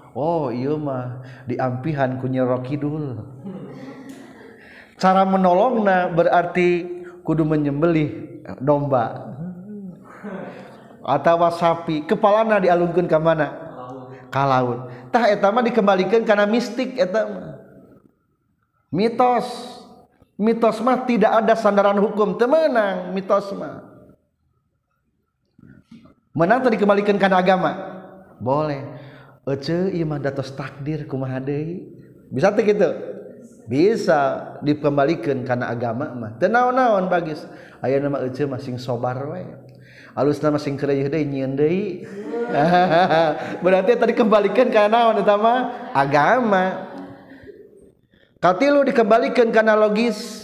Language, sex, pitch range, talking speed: Indonesian, male, 145-210 Hz, 70 wpm